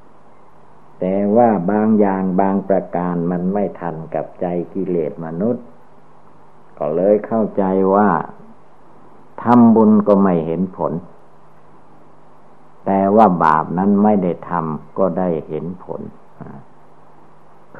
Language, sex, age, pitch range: Thai, male, 60-79, 85-105 Hz